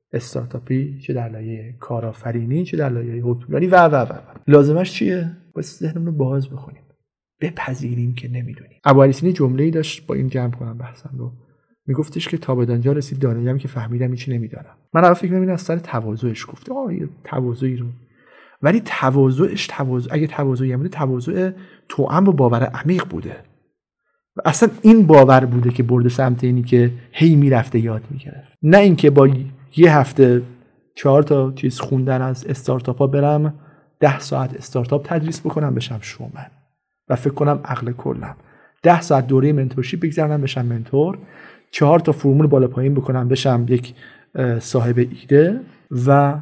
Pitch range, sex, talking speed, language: 125-155 Hz, male, 160 wpm, Persian